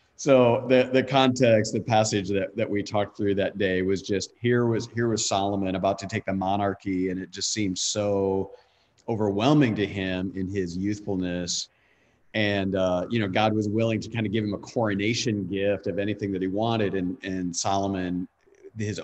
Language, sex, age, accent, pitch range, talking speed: English, male, 40-59, American, 95-115 Hz, 190 wpm